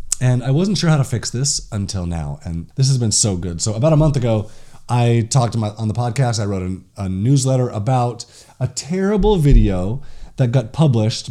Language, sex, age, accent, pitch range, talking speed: English, male, 30-49, American, 110-150 Hz, 200 wpm